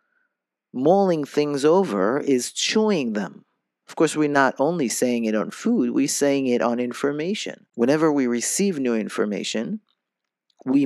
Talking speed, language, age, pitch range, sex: 145 wpm, English, 50-69, 120-160 Hz, male